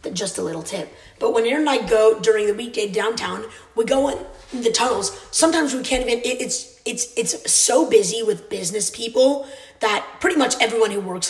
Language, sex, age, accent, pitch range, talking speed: English, female, 20-39, American, 195-250 Hz, 200 wpm